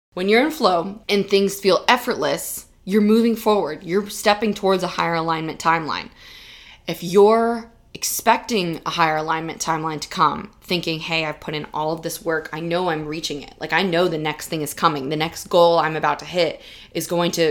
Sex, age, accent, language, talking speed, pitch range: female, 20-39, American, English, 200 wpm, 165-205 Hz